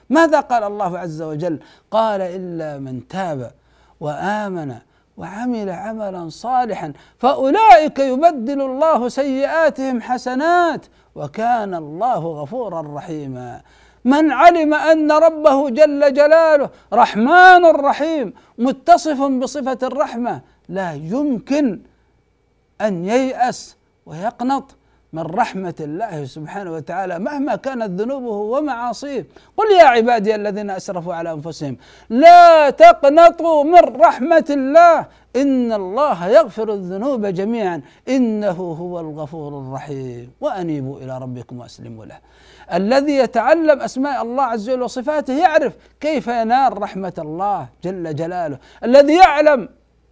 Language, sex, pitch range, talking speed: Arabic, male, 175-290 Hz, 105 wpm